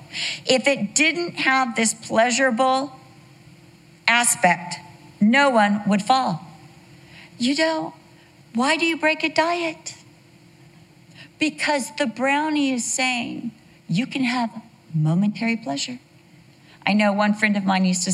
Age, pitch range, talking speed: 50-69, 165-230 Hz, 120 wpm